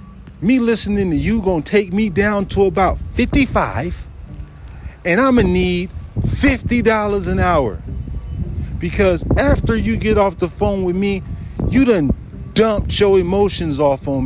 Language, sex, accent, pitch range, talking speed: English, male, American, 130-210 Hz, 150 wpm